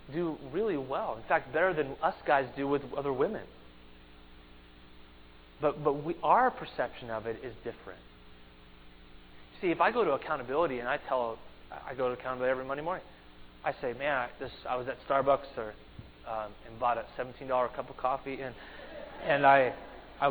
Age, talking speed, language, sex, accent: 20-39, 175 wpm, English, male, American